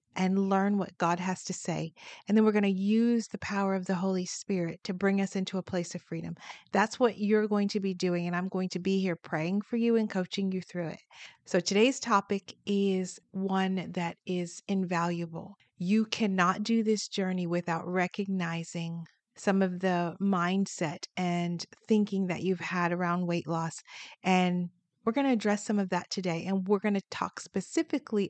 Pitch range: 175-210 Hz